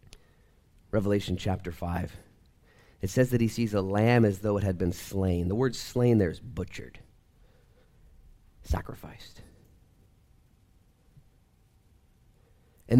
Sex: male